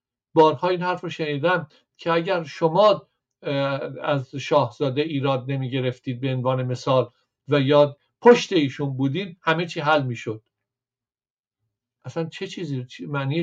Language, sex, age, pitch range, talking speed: Persian, male, 50-69, 125-150 Hz, 130 wpm